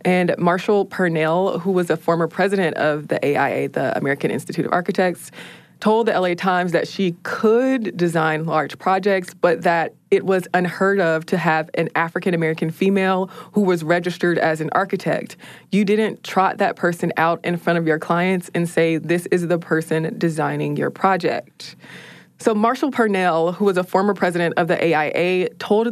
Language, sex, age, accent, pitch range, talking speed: English, female, 20-39, American, 165-190 Hz, 175 wpm